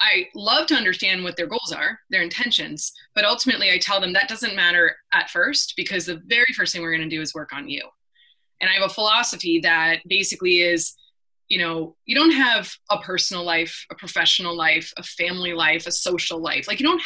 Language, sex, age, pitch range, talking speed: English, female, 20-39, 175-265 Hz, 210 wpm